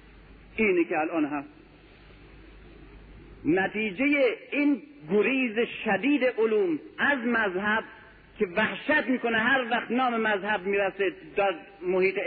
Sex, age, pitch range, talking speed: male, 50-69, 205-285 Hz, 105 wpm